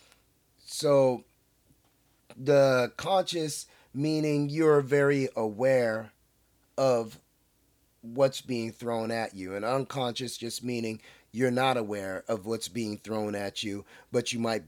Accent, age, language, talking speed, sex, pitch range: American, 30-49, English, 120 wpm, male, 110-140 Hz